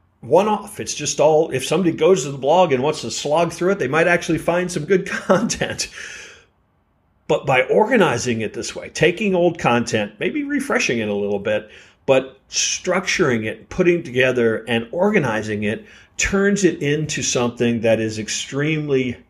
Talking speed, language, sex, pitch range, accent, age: 165 wpm, English, male, 115-170 Hz, American, 40-59